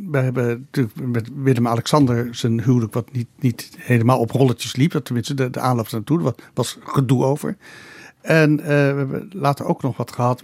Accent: Dutch